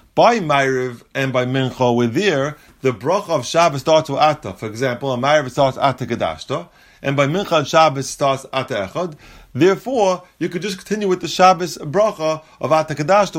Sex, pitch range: male, 130-185 Hz